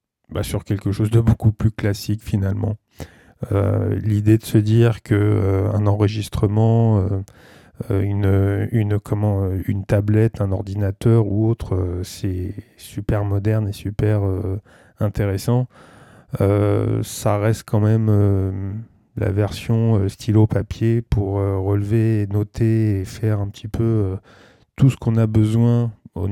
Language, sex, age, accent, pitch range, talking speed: French, male, 20-39, French, 100-115 Hz, 135 wpm